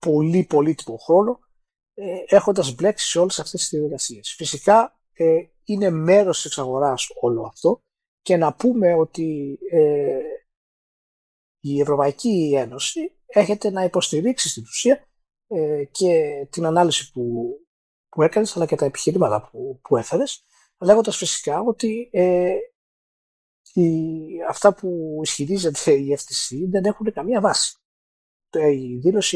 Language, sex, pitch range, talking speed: Greek, male, 145-200 Hz, 110 wpm